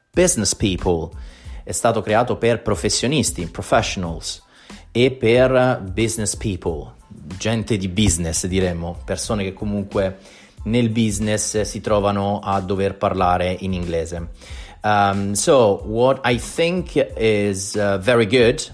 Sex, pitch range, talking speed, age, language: male, 95-110 Hz, 110 wpm, 30-49, Italian